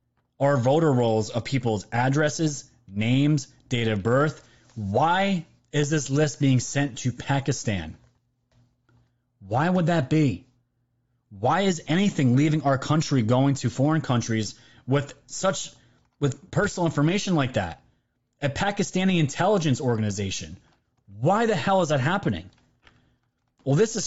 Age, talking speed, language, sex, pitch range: 30-49, 130 wpm, English, male, 120-160 Hz